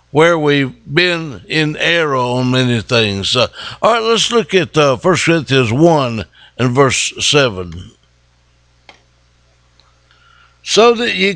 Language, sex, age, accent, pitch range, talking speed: English, male, 60-79, American, 130-190 Hz, 125 wpm